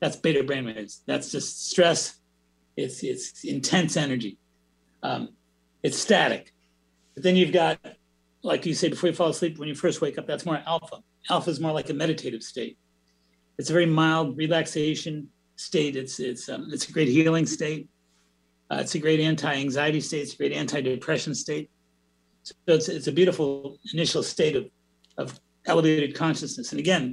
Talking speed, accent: 175 wpm, American